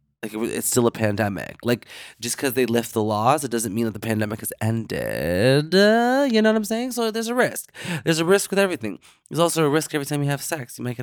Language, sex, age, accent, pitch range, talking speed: English, male, 20-39, American, 105-130 Hz, 250 wpm